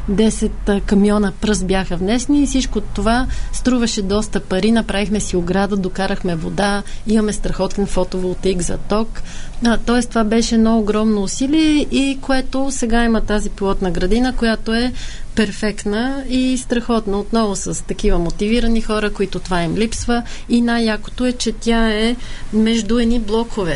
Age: 30-49